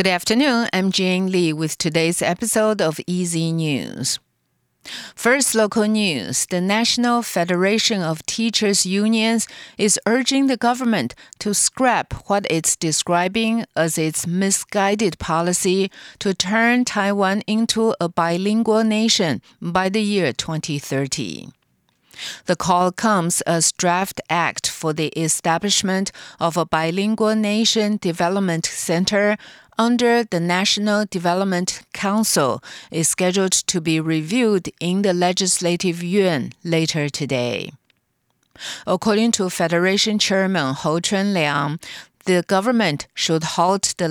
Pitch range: 165-215 Hz